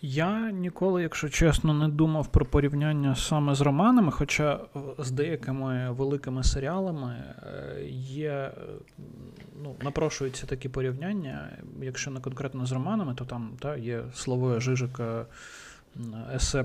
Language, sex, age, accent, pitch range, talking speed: Ukrainian, male, 20-39, native, 125-150 Hz, 120 wpm